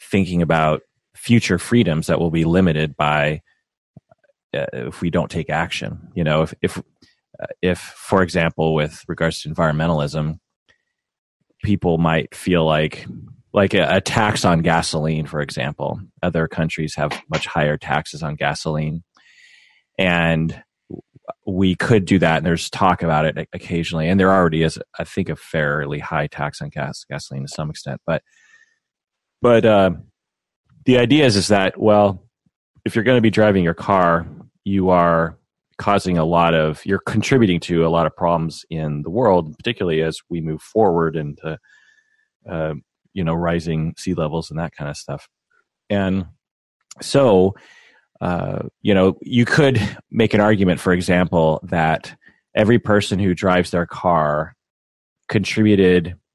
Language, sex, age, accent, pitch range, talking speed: English, male, 30-49, American, 80-100 Hz, 150 wpm